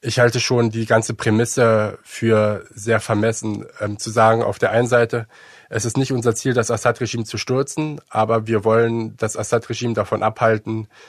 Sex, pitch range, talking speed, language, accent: male, 105-115 Hz, 175 wpm, German, German